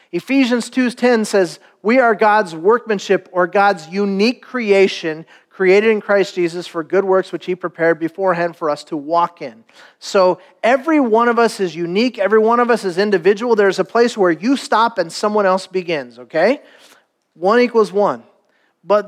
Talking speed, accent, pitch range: 175 wpm, American, 180-240 Hz